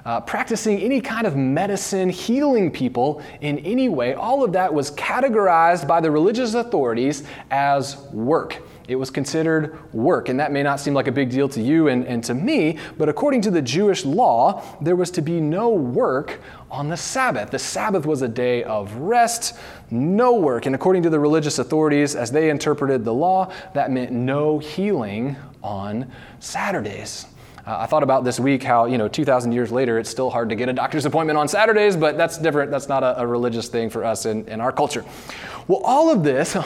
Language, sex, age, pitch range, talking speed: English, male, 20-39, 130-185 Hz, 200 wpm